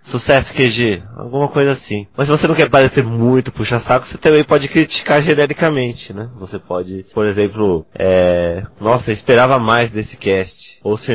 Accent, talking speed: Brazilian, 170 wpm